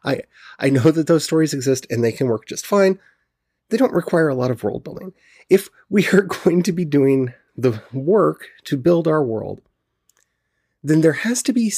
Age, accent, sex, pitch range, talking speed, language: 30-49, American, male, 125-185 Hz, 200 wpm, English